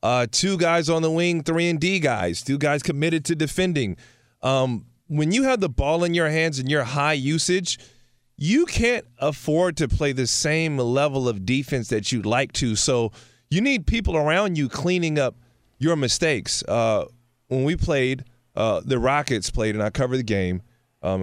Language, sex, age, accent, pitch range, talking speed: English, male, 20-39, American, 120-150 Hz, 185 wpm